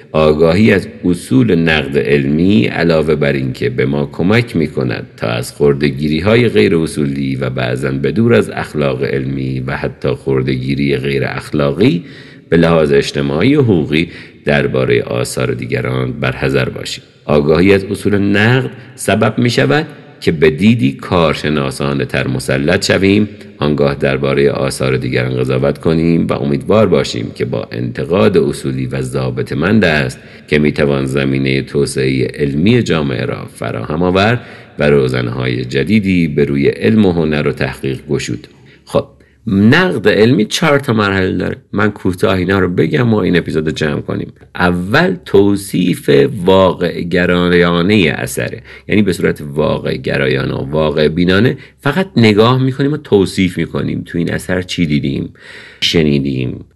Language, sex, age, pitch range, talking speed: Persian, male, 50-69, 70-100 Hz, 140 wpm